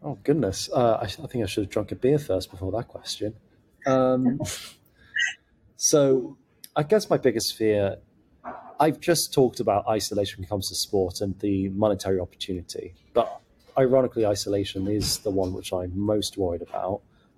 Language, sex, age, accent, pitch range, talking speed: English, male, 30-49, British, 95-120 Hz, 160 wpm